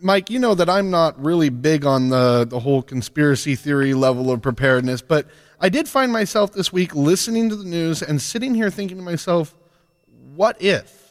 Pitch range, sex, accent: 140-180 Hz, male, American